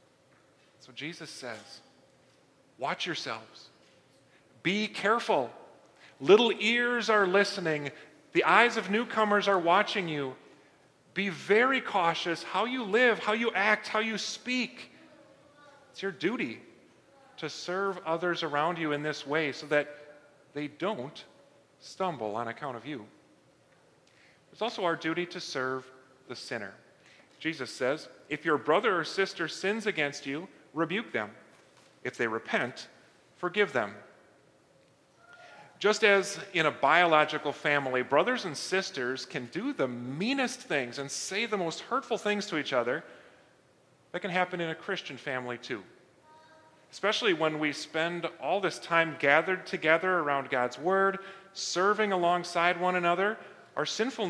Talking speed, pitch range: 135 wpm, 150-210 Hz